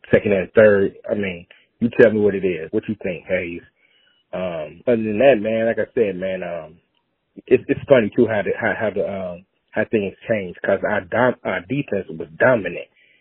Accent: American